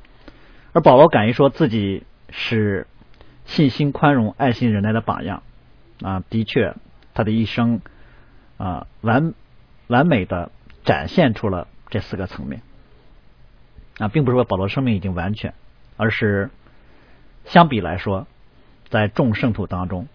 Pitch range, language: 95-120 Hz, Chinese